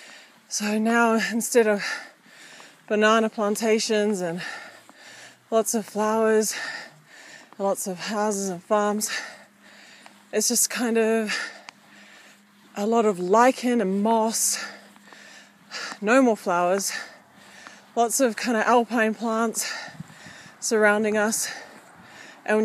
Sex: female